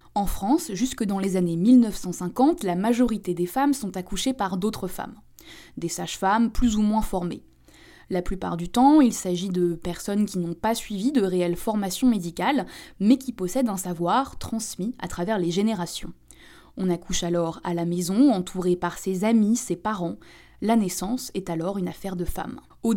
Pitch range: 185-245 Hz